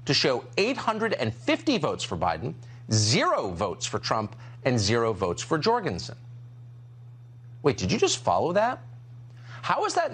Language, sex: English, male